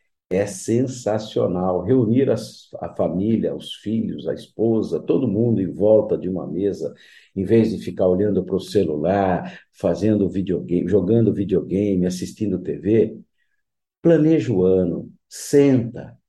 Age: 50-69